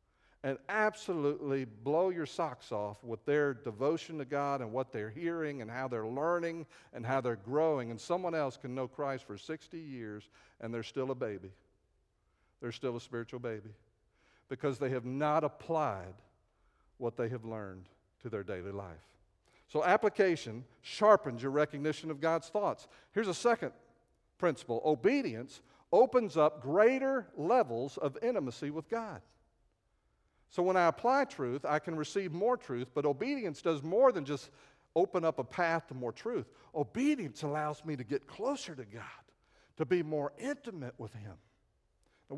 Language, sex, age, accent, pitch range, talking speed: English, male, 50-69, American, 125-210 Hz, 160 wpm